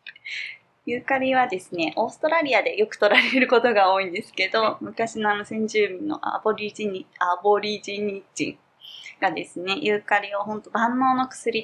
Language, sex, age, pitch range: Japanese, female, 20-39, 180-235 Hz